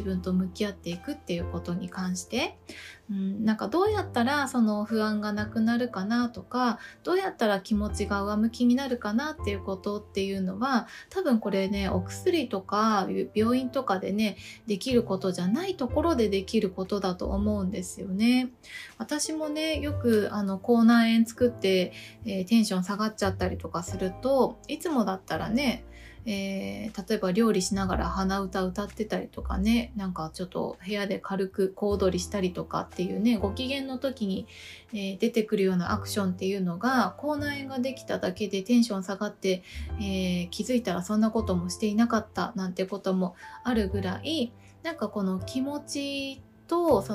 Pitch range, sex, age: 190-240 Hz, female, 20-39